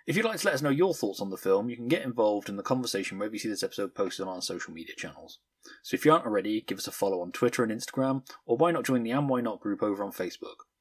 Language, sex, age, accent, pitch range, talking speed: English, male, 20-39, British, 105-135 Hz, 305 wpm